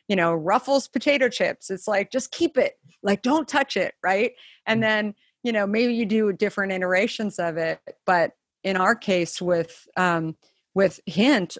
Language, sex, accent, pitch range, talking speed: English, female, American, 170-210 Hz, 175 wpm